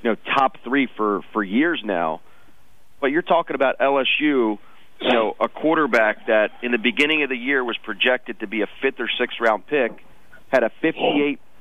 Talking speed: 185 wpm